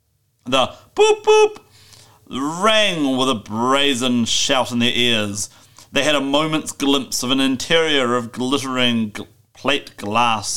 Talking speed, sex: 130 wpm, male